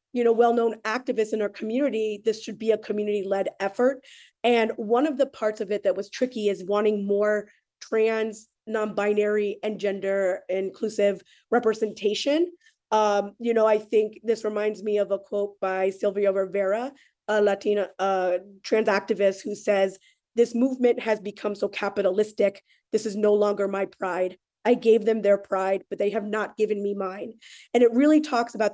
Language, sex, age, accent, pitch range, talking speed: English, female, 20-39, American, 200-225 Hz, 170 wpm